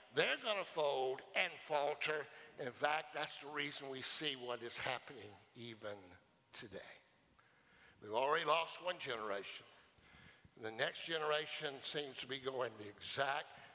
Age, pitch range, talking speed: 60-79, 135-190 Hz, 135 wpm